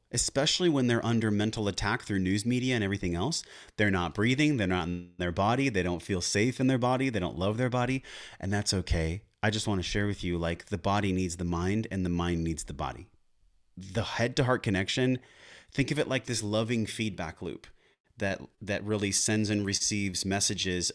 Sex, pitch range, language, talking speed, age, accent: male, 95-125 Hz, English, 205 wpm, 30-49, American